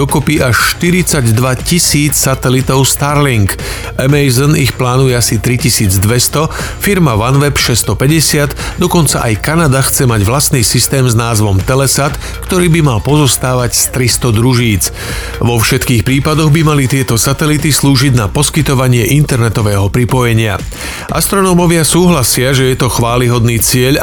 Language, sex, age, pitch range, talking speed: Slovak, male, 40-59, 120-145 Hz, 125 wpm